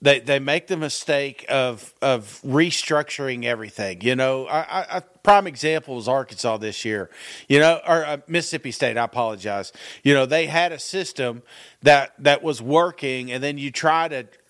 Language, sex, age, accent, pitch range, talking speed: English, male, 40-59, American, 125-160 Hz, 175 wpm